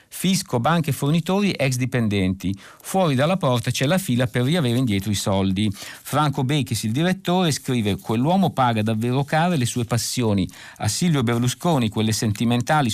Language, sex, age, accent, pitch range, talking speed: Italian, male, 50-69, native, 115-155 Hz, 155 wpm